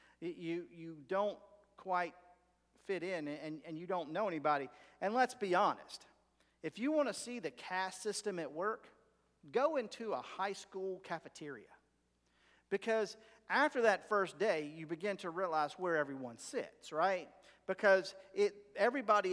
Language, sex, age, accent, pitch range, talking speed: English, male, 50-69, American, 145-185 Hz, 150 wpm